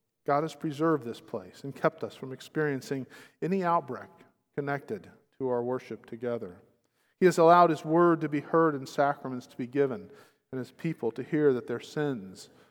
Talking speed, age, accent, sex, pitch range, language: 180 wpm, 50-69, American, male, 130-165 Hz, English